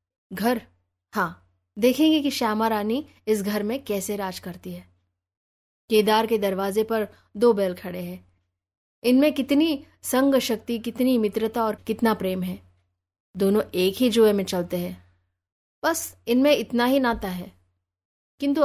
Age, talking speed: 20-39, 145 wpm